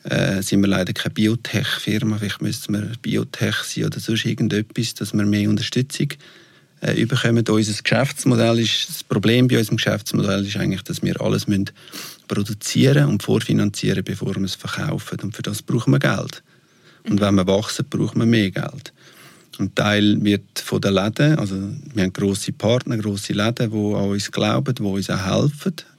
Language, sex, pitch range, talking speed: German, male, 105-130 Hz, 170 wpm